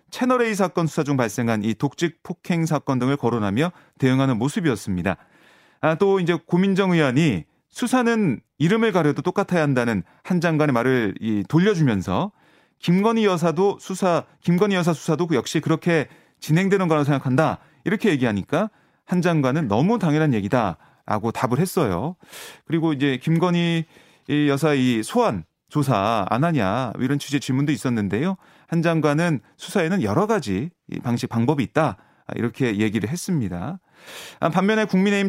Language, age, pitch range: Korean, 30-49, 130-180 Hz